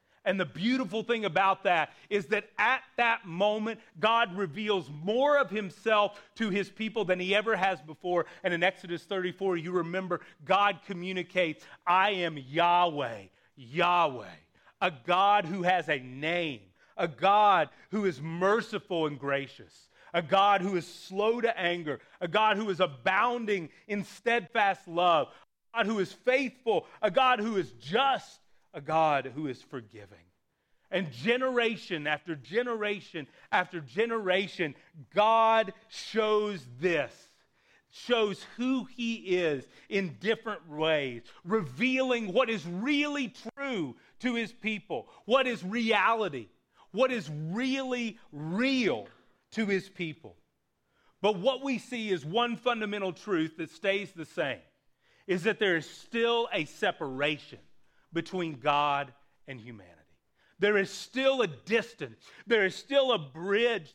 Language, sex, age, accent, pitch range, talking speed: English, male, 30-49, American, 165-225 Hz, 135 wpm